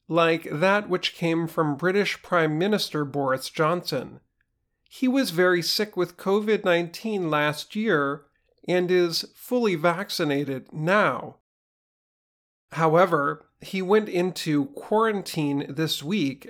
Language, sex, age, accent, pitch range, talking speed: English, male, 40-59, American, 145-190 Hz, 110 wpm